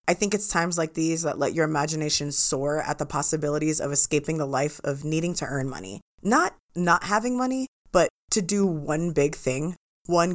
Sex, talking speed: female, 195 wpm